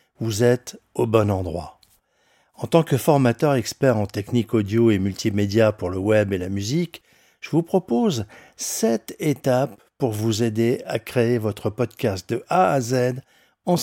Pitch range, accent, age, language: 110-140 Hz, French, 50-69, French